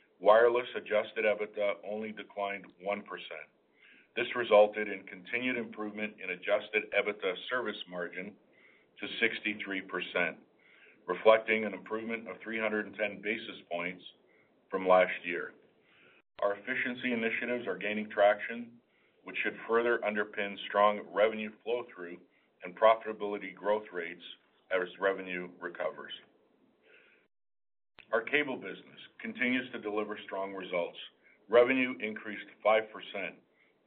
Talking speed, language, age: 105 wpm, English, 50-69